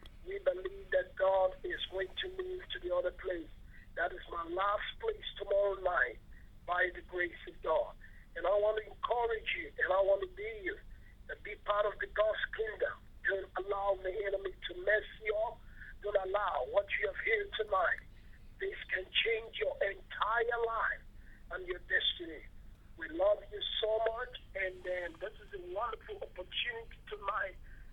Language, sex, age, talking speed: English, male, 50-69, 170 wpm